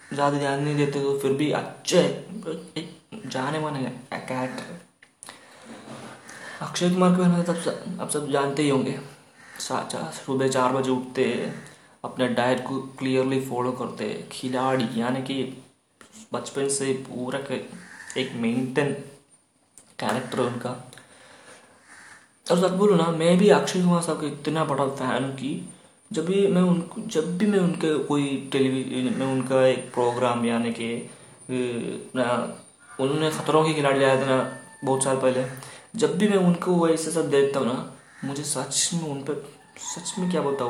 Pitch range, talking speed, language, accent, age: 130-155 Hz, 145 wpm, Hindi, native, 20-39